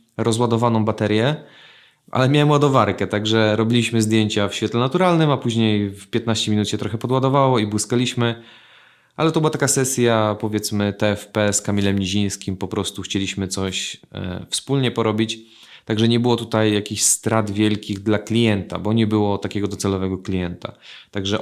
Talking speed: 150 wpm